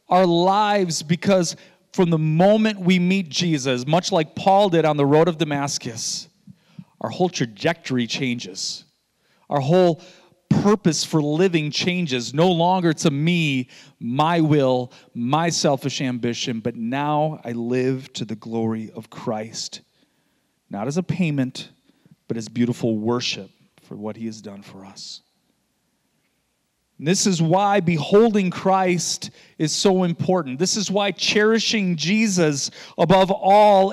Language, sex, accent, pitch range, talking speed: English, male, American, 150-205 Hz, 135 wpm